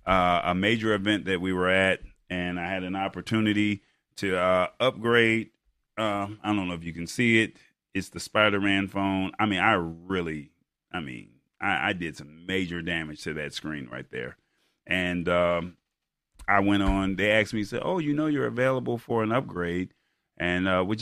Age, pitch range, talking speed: 30-49, 85-105 Hz, 190 wpm